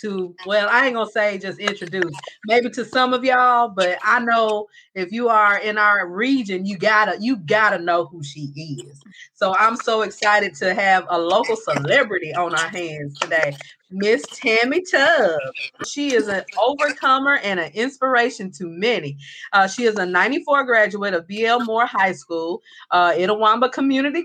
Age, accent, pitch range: 30-49, American, 185-250 Hz